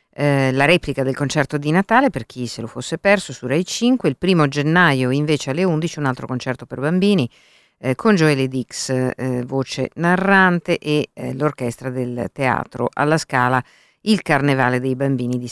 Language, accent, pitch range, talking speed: Italian, native, 125-155 Hz, 180 wpm